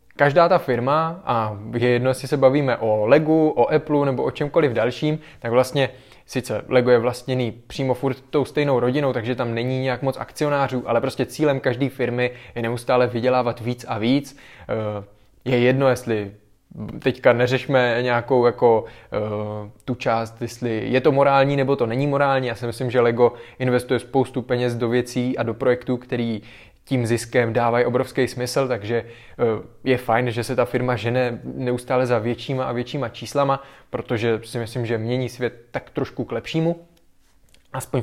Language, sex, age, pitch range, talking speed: Czech, male, 20-39, 120-140 Hz, 165 wpm